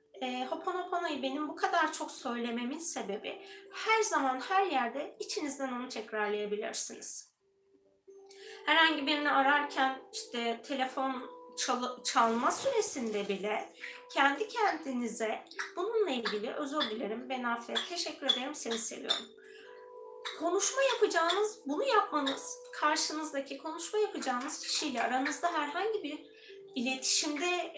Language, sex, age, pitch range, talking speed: Turkish, female, 20-39, 245-360 Hz, 105 wpm